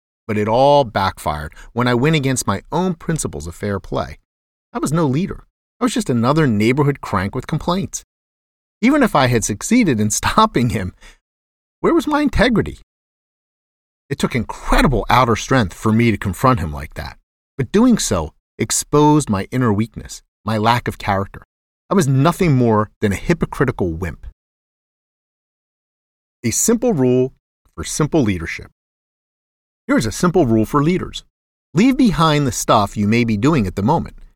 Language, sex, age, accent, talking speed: English, male, 40-59, American, 160 wpm